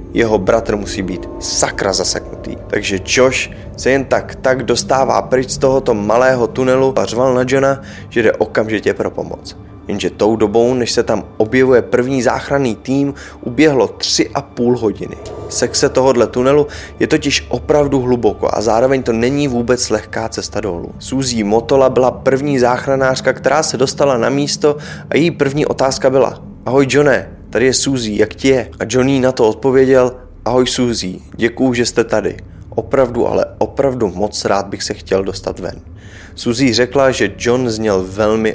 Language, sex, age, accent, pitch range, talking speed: Czech, male, 20-39, native, 110-135 Hz, 165 wpm